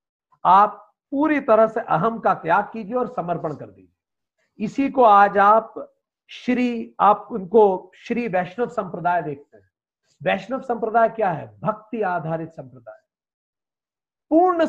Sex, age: male, 50-69